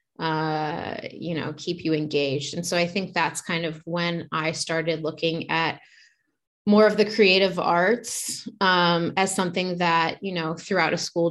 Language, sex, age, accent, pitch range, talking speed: English, female, 20-39, American, 165-185 Hz, 170 wpm